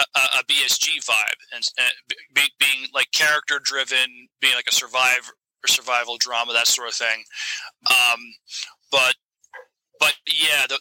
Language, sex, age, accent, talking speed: English, male, 30-49, American, 150 wpm